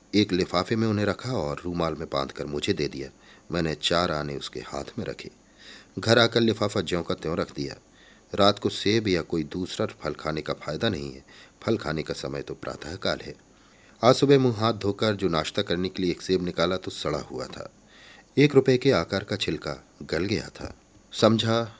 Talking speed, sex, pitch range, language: 205 wpm, male, 85-115 Hz, Hindi